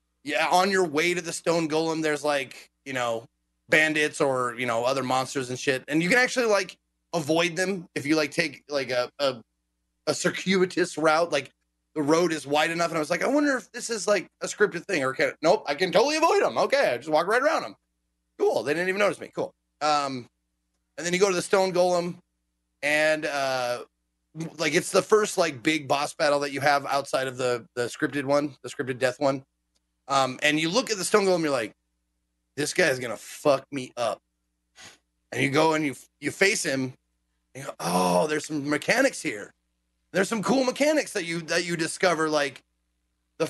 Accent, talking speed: American, 215 wpm